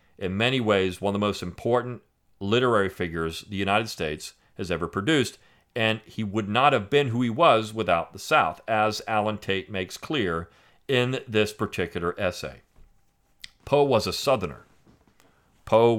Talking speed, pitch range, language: 160 wpm, 95-115 Hz, English